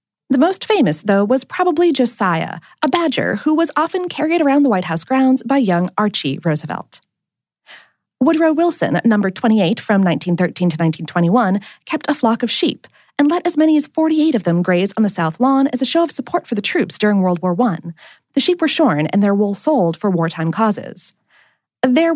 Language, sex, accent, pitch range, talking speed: English, female, American, 190-305 Hz, 195 wpm